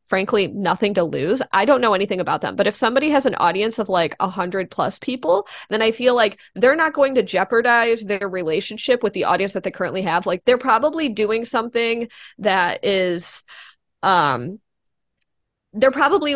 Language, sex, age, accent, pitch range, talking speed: English, female, 20-39, American, 190-250 Hz, 180 wpm